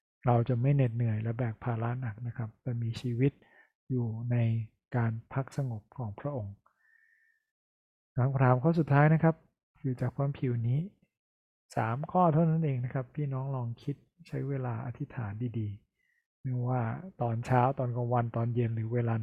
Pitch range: 115-140 Hz